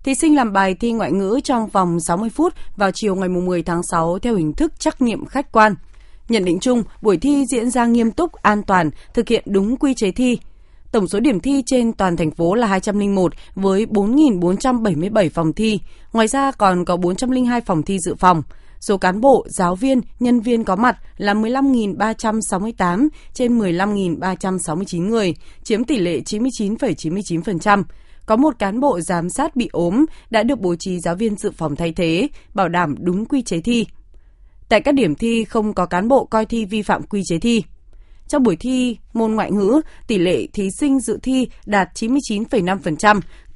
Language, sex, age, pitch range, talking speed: Vietnamese, female, 20-39, 190-245 Hz, 185 wpm